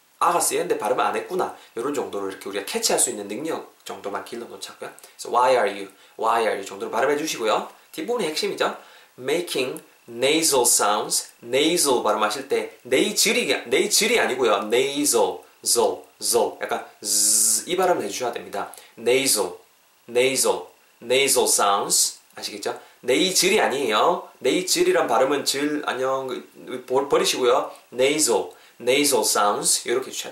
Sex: male